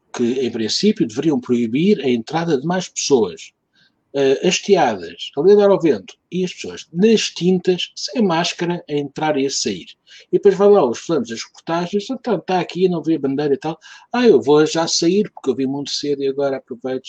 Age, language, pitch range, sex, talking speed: 60-79, Portuguese, 120-180 Hz, male, 205 wpm